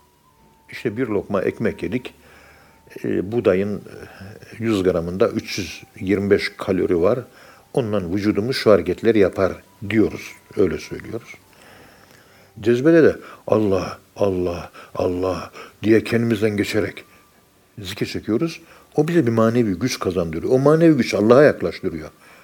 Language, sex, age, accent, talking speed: Turkish, male, 60-79, native, 105 wpm